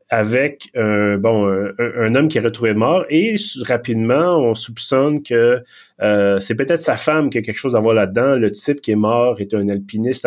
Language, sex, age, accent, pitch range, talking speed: French, male, 30-49, Canadian, 105-130 Hz, 200 wpm